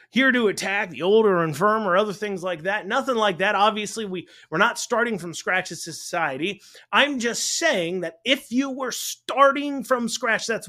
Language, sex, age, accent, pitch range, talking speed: English, male, 30-49, American, 185-260 Hz, 200 wpm